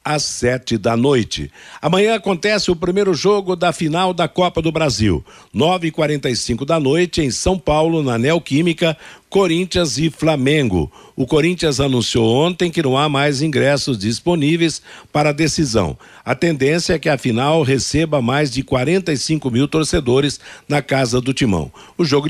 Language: Portuguese